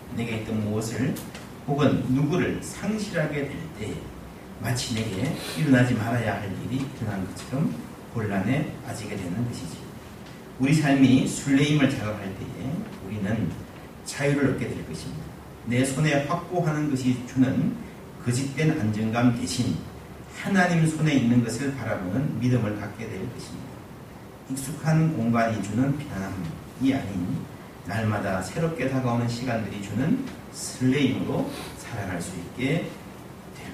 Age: 40-59